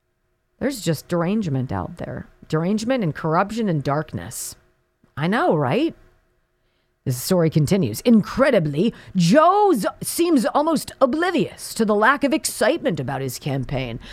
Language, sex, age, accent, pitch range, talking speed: English, female, 40-59, American, 175-290 Hz, 125 wpm